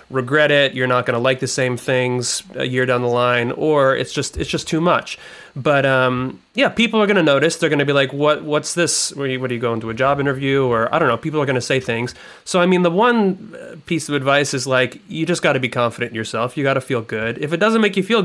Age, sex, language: 30-49, male, English